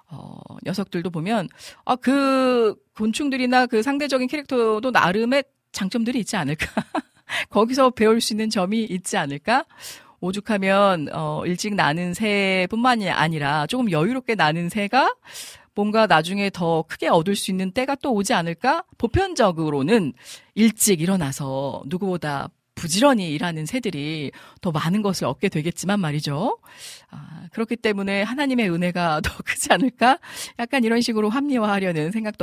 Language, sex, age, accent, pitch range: Korean, female, 40-59, native, 165-240 Hz